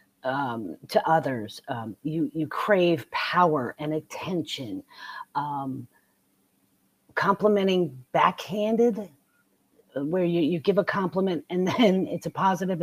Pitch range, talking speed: 150-195 Hz, 110 wpm